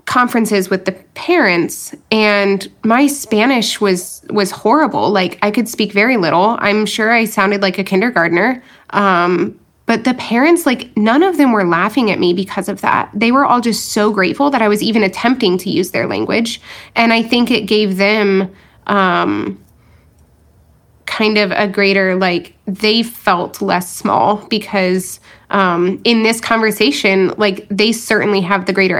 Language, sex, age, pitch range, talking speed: English, female, 20-39, 190-220 Hz, 165 wpm